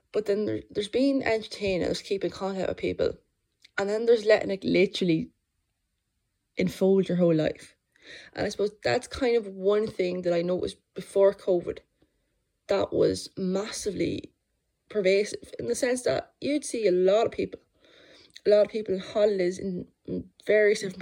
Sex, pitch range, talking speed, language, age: female, 185-260 Hz, 170 wpm, English, 20-39